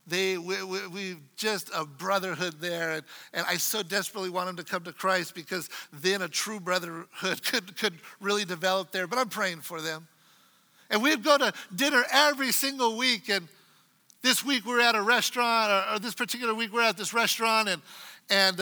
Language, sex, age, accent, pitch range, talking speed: English, male, 50-69, American, 185-230 Hz, 195 wpm